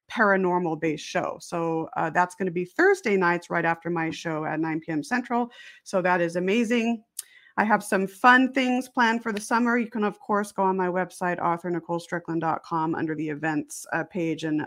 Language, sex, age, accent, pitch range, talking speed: English, female, 30-49, American, 165-210 Hz, 190 wpm